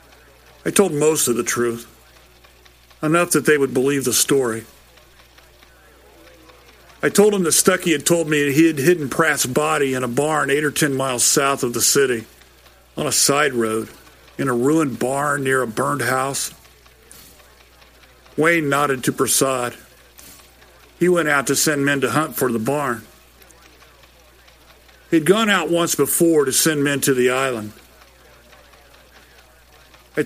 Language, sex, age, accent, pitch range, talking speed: English, male, 50-69, American, 120-155 Hz, 150 wpm